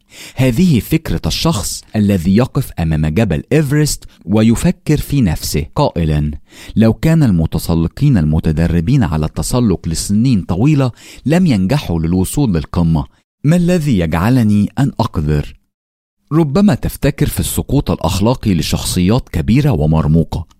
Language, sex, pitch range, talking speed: English, male, 80-135 Hz, 110 wpm